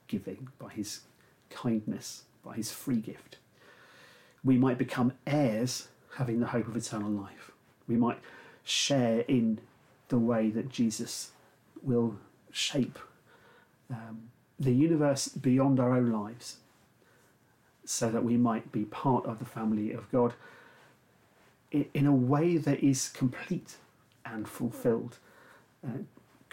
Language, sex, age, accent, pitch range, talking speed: English, male, 40-59, British, 115-130 Hz, 125 wpm